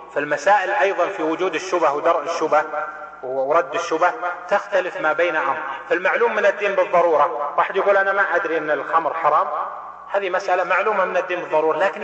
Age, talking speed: 30-49, 160 wpm